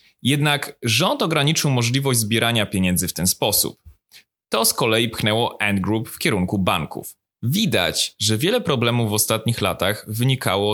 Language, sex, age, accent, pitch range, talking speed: Polish, male, 20-39, native, 105-140 Hz, 140 wpm